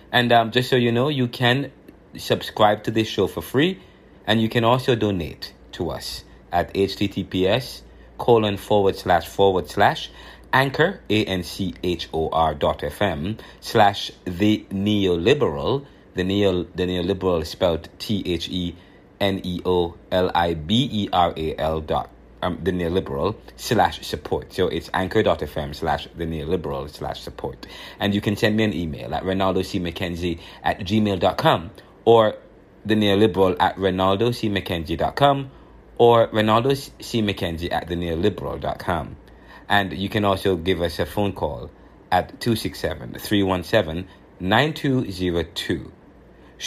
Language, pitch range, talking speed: English, 90-110 Hz, 125 wpm